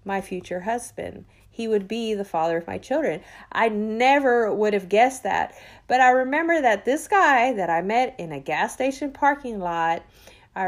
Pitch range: 190-240 Hz